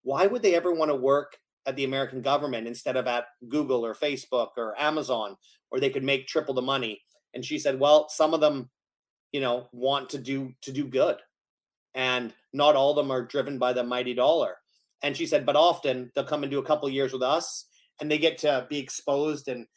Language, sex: English, male